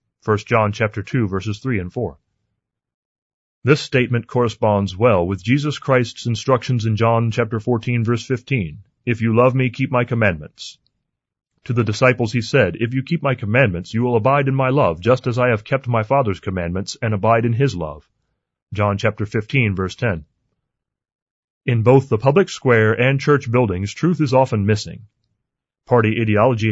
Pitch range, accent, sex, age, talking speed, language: 105-130 Hz, American, male, 30-49, 175 wpm, English